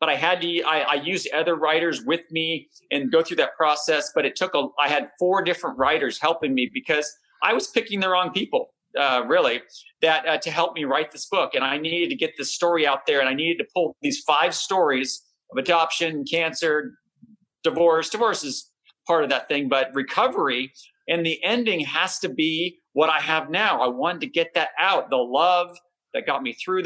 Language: English